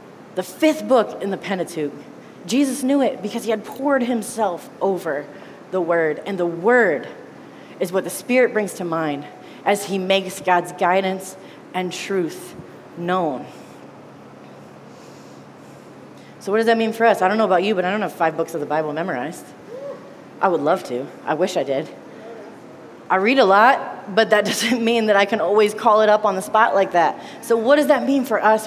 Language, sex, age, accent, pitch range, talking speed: English, female, 30-49, American, 185-245 Hz, 195 wpm